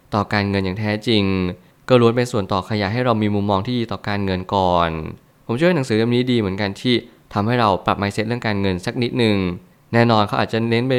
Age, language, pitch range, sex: 20-39, Thai, 100-125 Hz, male